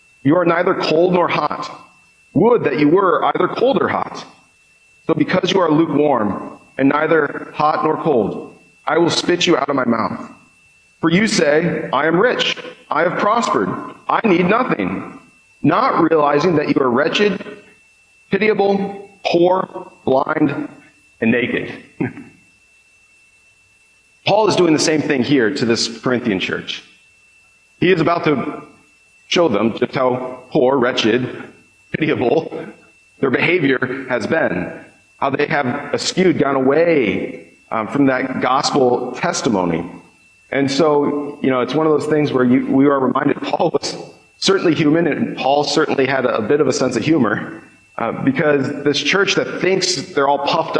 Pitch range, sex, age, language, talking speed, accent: 130-180 Hz, male, 40-59, English, 155 wpm, American